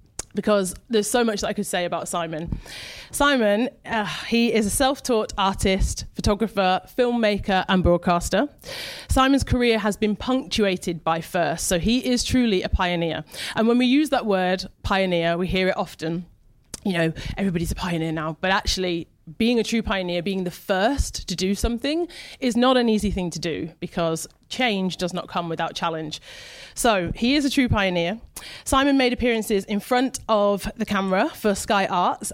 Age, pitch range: 30-49, 180-235 Hz